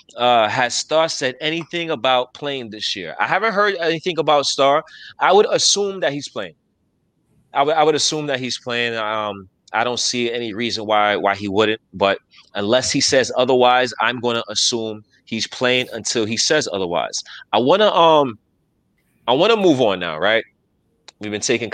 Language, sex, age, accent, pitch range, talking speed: English, male, 30-49, American, 105-130 Hz, 190 wpm